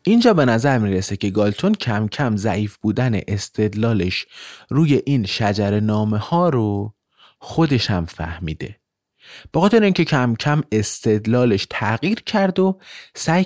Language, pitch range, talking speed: Persian, 100-145 Hz, 140 wpm